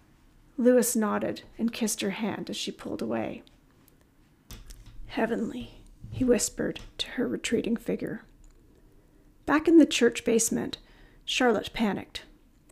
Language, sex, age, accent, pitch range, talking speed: English, female, 40-59, American, 190-235 Hz, 115 wpm